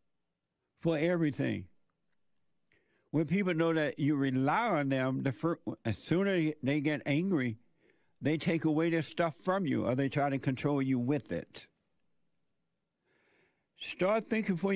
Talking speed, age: 140 wpm, 60-79